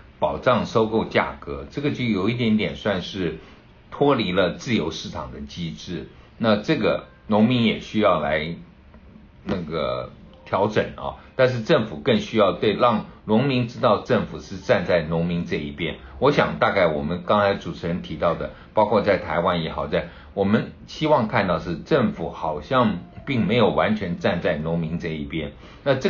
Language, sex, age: Chinese, male, 60-79